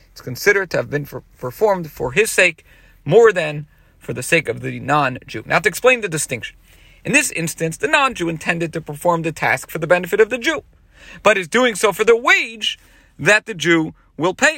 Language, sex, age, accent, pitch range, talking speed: English, male, 40-59, American, 145-220 Hz, 205 wpm